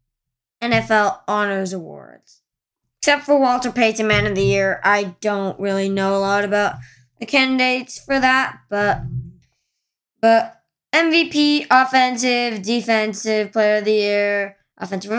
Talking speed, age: 125 wpm, 20-39